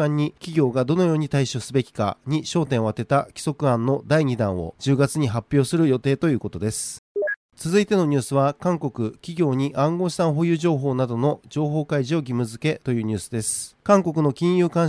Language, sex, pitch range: Japanese, male, 125-160 Hz